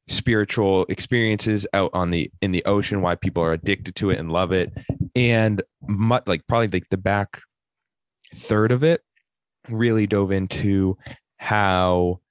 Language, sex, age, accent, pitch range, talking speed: English, male, 20-39, American, 95-110 Hz, 150 wpm